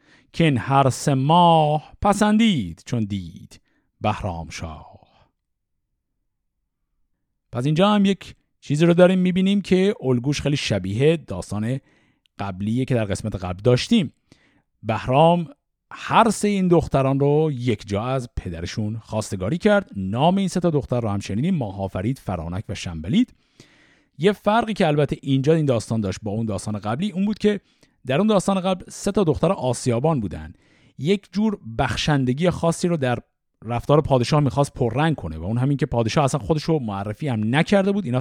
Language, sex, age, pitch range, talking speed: Persian, male, 50-69, 110-175 Hz, 155 wpm